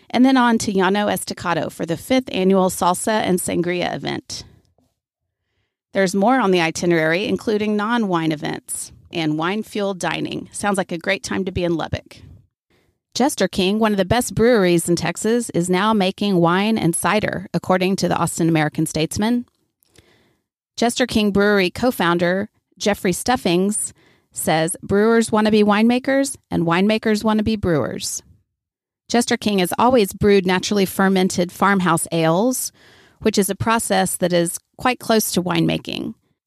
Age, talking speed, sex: 40-59, 150 wpm, female